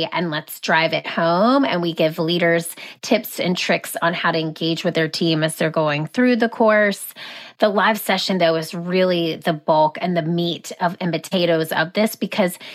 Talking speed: 195 wpm